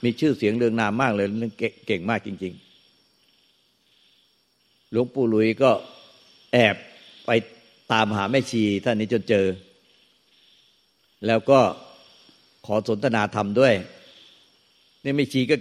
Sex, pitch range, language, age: male, 105-135 Hz, Thai, 60-79